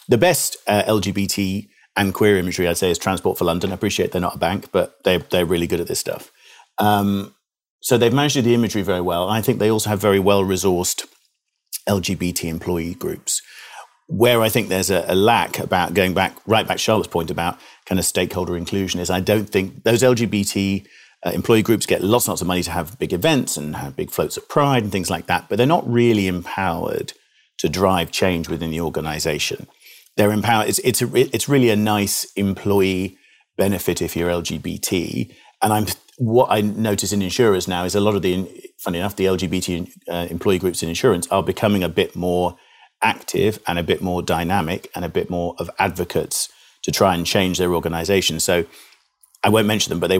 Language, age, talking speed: English, 40-59, 205 wpm